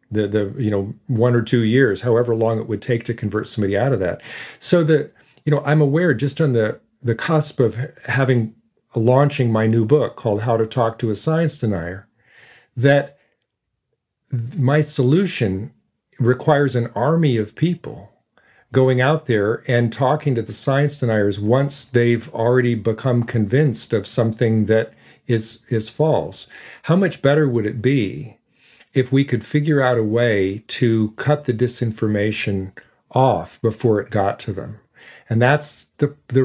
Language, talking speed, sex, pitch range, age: English, 165 wpm, male, 110-140 Hz, 50-69